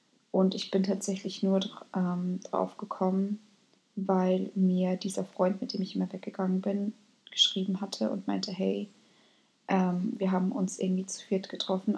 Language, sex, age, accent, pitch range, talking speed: German, female, 20-39, German, 190-210 Hz, 155 wpm